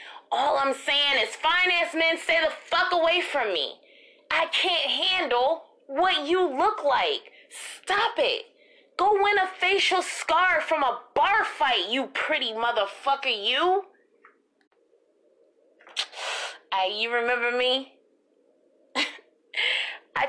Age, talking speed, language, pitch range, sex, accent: 20-39, 115 wpm, English, 285-445 Hz, female, American